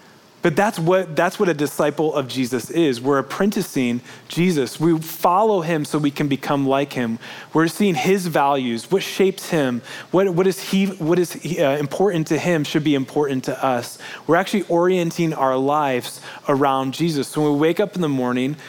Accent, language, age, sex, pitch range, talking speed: American, English, 20-39, male, 135-175 Hz, 195 wpm